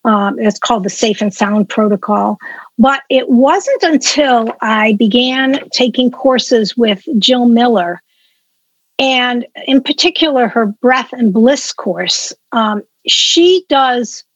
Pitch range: 225-280 Hz